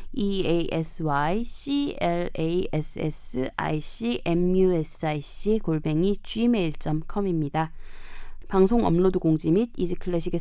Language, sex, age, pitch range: Korean, female, 20-39, 160-235 Hz